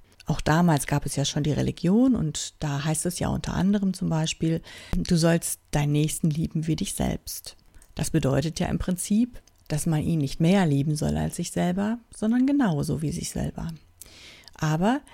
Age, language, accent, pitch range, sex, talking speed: 50-69, German, German, 155-205 Hz, female, 180 wpm